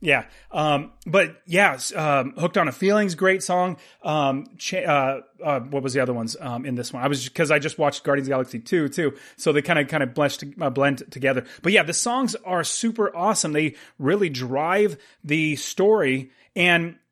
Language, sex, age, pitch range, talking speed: English, male, 30-49, 140-180 Hz, 205 wpm